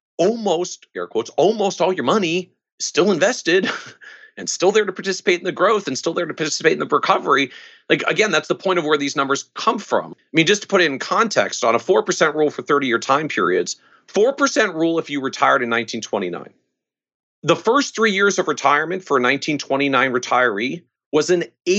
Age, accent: 40-59, American